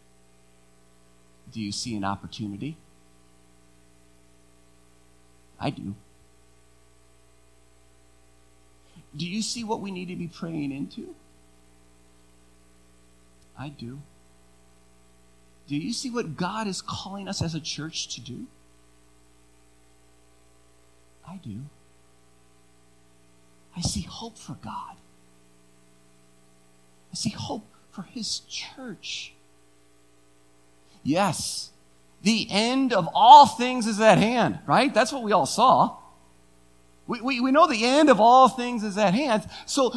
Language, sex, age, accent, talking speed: English, male, 40-59, American, 110 wpm